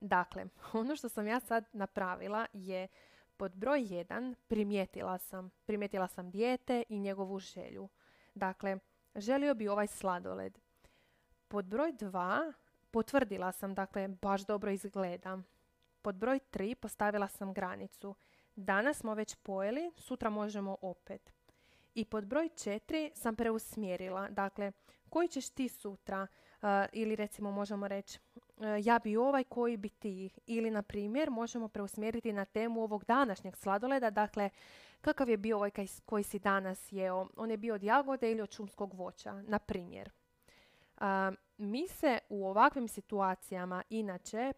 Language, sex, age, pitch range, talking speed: Croatian, female, 20-39, 195-230 Hz, 140 wpm